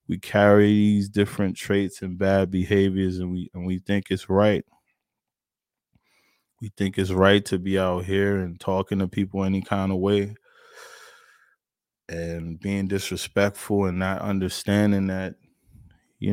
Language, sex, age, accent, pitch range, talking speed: English, male, 20-39, American, 95-105 Hz, 145 wpm